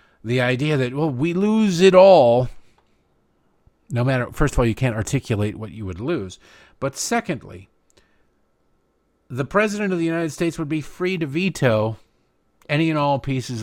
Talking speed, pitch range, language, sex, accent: 165 wpm, 105-140 Hz, English, male, American